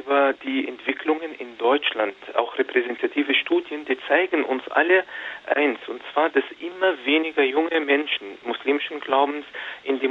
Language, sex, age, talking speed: German, male, 40-59, 140 wpm